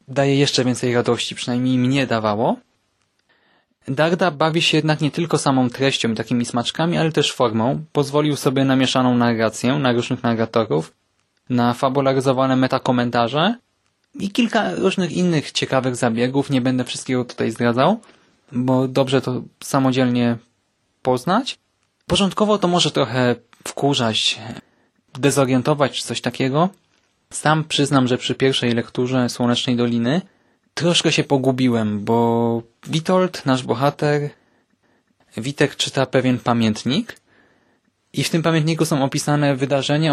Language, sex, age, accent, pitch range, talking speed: Polish, male, 20-39, native, 125-150 Hz, 125 wpm